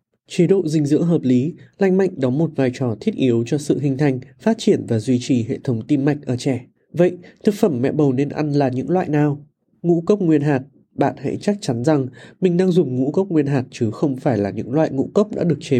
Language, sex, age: Vietnamese, male, 20-39